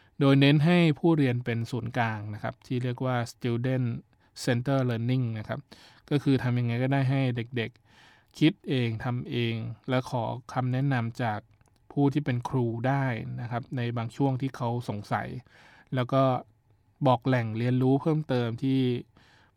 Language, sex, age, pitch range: Thai, male, 20-39, 120-140 Hz